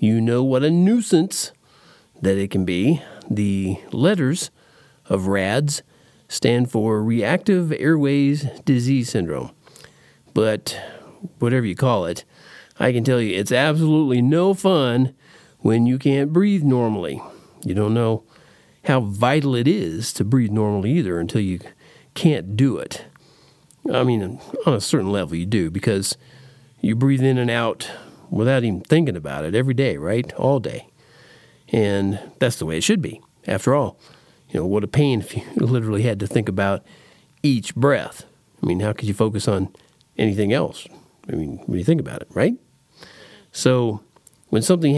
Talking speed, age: 160 wpm, 40-59